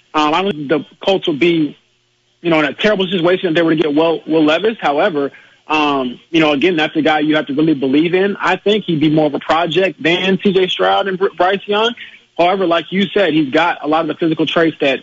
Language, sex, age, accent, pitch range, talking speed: English, male, 30-49, American, 145-175 Hz, 250 wpm